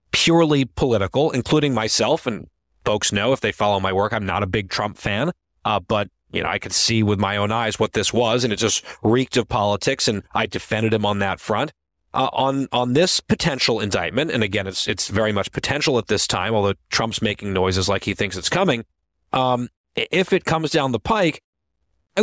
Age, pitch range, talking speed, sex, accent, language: 30-49, 105-140 Hz, 210 wpm, male, American, English